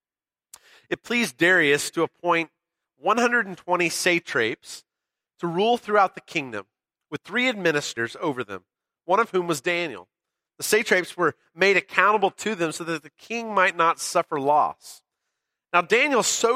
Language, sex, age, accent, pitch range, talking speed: English, male, 30-49, American, 155-205 Hz, 145 wpm